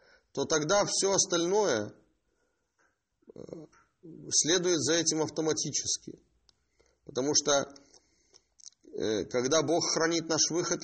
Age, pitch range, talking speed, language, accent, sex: 30-49, 130-170 Hz, 85 wpm, Russian, native, male